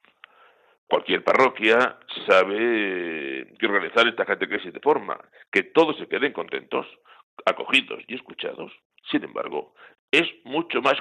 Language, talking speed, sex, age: Spanish, 125 wpm, male, 60-79